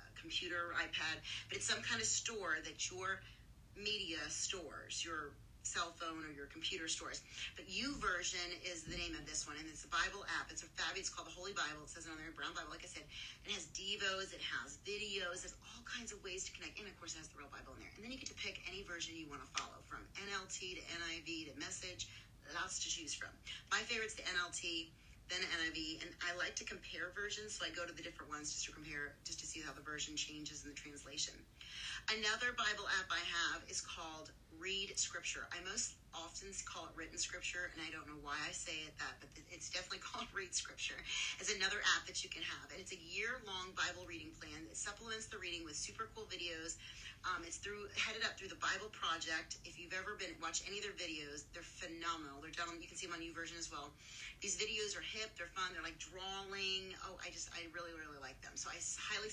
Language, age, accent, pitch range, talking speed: English, 40-59, American, 160-190 Hz, 235 wpm